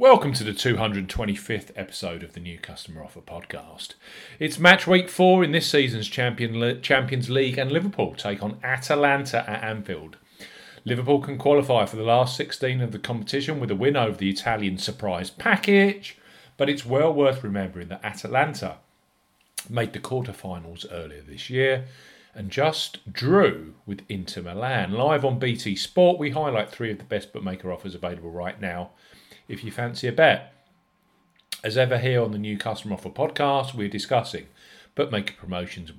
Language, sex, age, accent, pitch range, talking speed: English, male, 40-59, British, 105-145 Hz, 165 wpm